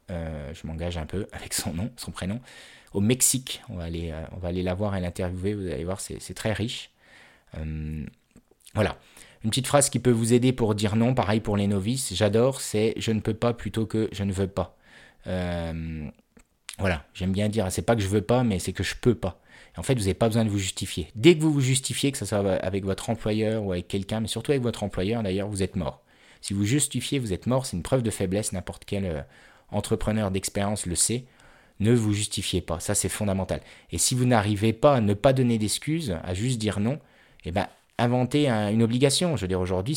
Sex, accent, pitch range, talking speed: male, French, 95-120 Hz, 230 wpm